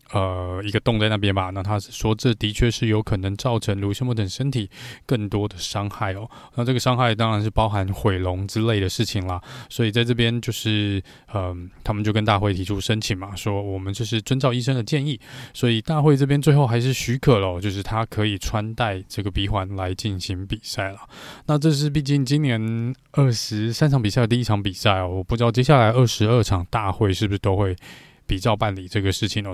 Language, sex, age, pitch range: Chinese, male, 20-39, 100-120 Hz